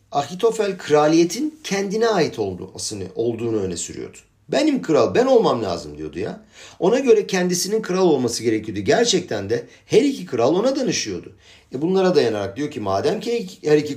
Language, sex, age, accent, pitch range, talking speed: Turkish, male, 50-69, native, 105-170 Hz, 160 wpm